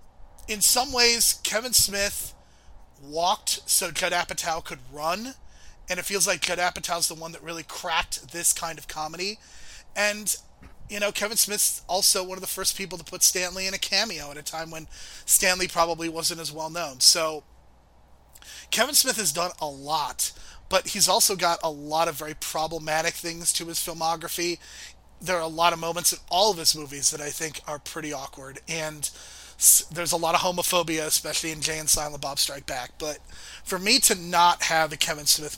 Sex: male